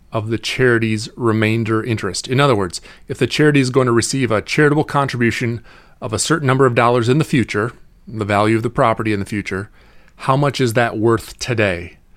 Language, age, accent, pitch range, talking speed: English, 30-49, American, 110-140 Hz, 200 wpm